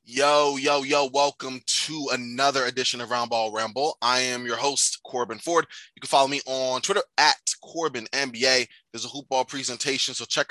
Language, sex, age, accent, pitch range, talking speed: English, male, 20-39, American, 125-150 Hz, 175 wpm